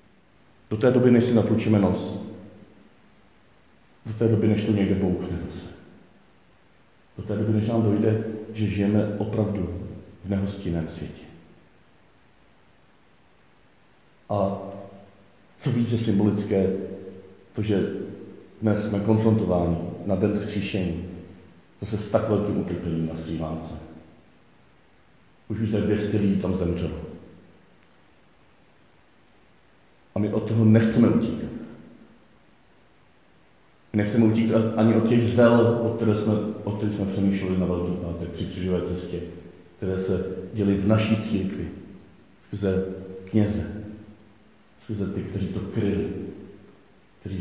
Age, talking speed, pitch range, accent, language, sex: 50-69, 115 wpm, 95-110 Hz, native, Czech, male